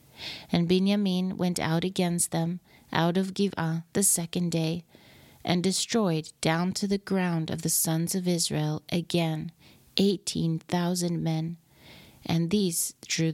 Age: 40-59